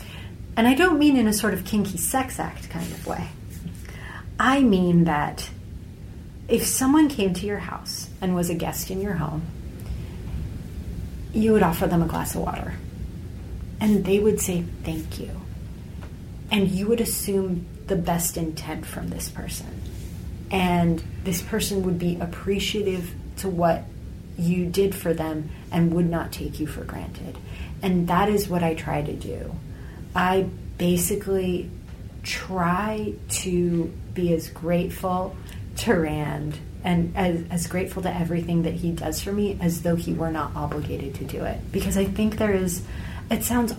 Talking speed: 160 wpm